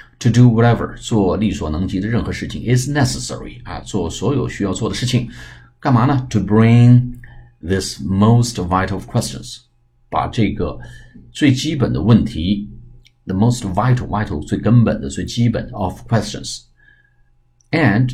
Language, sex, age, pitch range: Chinese, male, 50-69, 95-120 Hz